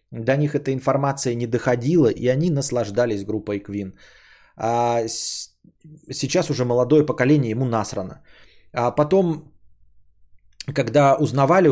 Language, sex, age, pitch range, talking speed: Bulgarian, male, 20-39, 110-155 Hz, 115 wpm